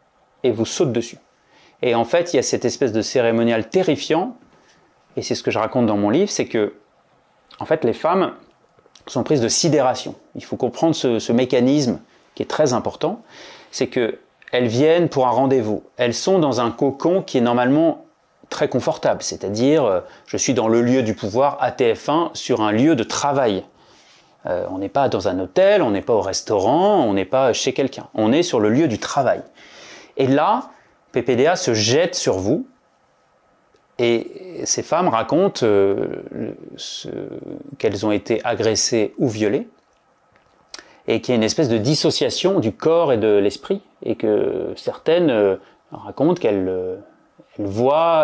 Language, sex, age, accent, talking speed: French, male, 30-49, French, 170 wpm